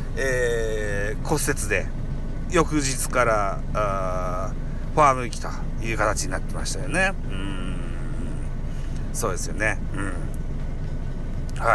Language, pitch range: Japanese, 110-160 Hz